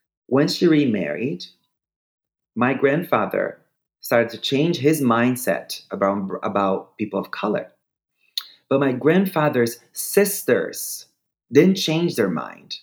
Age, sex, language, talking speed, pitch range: 30-49, male, English, 110 wpm, 100-135 Hz